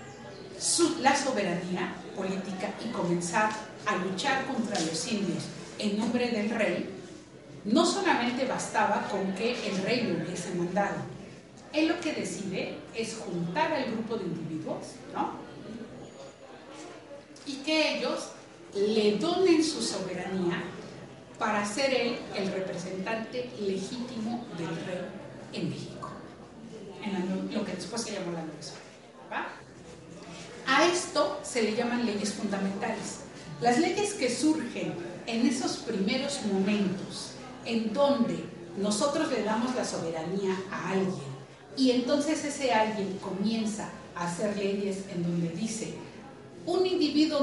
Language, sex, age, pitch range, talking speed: Spanish, female, 40-59, 185-260 Hz, 125 wpm